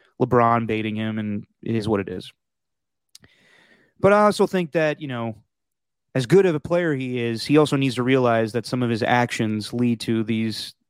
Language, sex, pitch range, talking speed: English, male, 120-165 Hz, 200 wpm